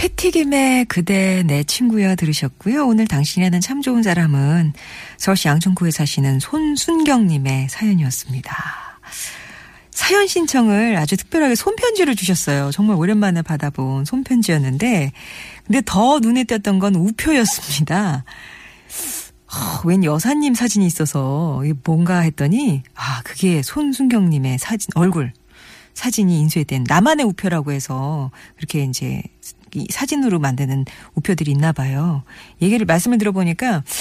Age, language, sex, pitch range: 40-59, Korean, female, 150-230 Hz